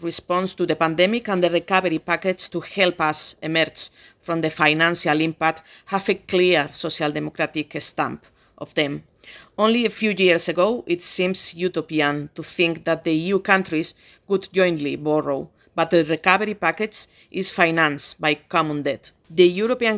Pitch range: 155-185 Hz